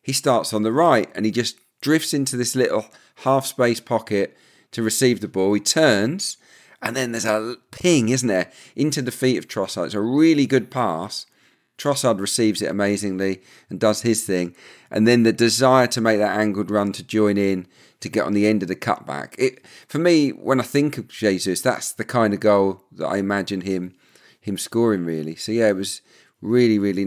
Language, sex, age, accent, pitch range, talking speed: English, male, 40-59, British, 100-125 Hz, 200 wpm